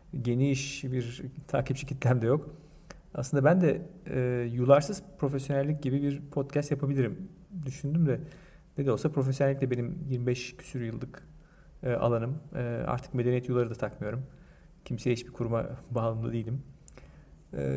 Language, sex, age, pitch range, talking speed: Turkish, male, 40-59, 125-150 Hz, 135 wpm